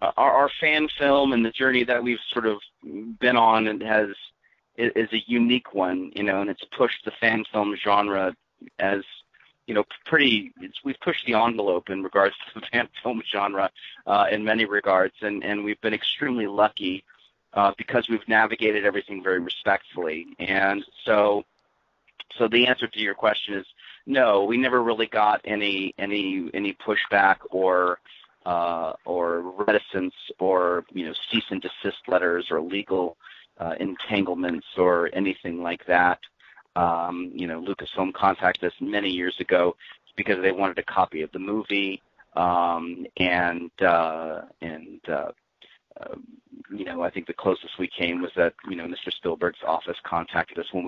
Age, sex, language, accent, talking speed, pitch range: 40-59, male, English, American, 165 wpm, 90-110 Hz